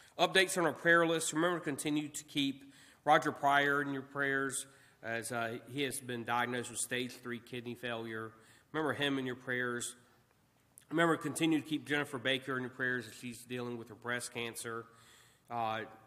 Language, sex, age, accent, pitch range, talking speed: English, male, 40-59, American, 115-140 Hz, 185 wpm